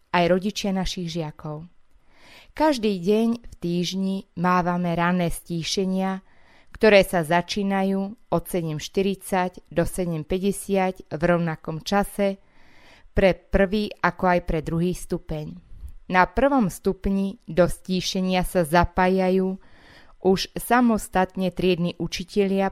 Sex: female